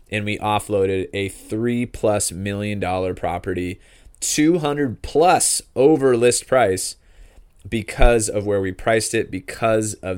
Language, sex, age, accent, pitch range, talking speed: English, male, 20-39, American, 95-115 Hz, 130 wpm